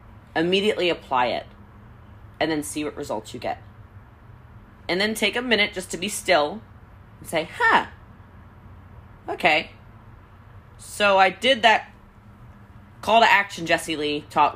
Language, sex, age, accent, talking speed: English, female, 20-39, American, 135 wpm